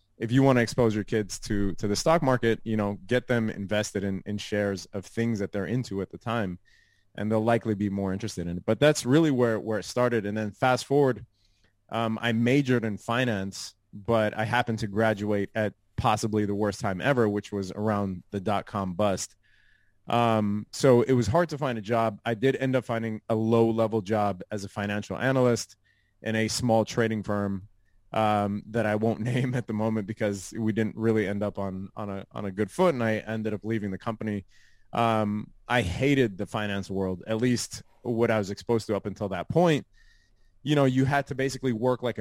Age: 20-39